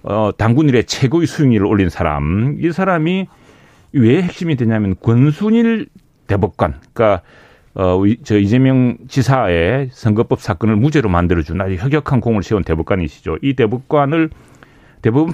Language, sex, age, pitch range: Korean, male, 40-59, 105-155 Hz